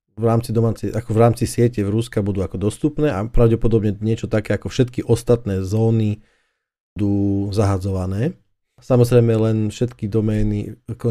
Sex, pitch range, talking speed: male, 105-115 Hz, 140 wpm